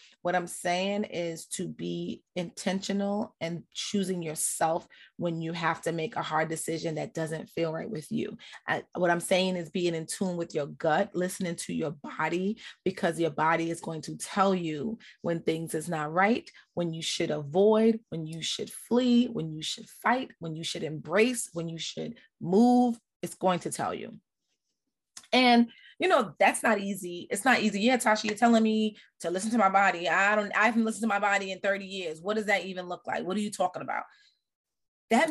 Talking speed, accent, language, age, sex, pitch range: 200 wpm, American, English, 30-49, female, 165-220 Hz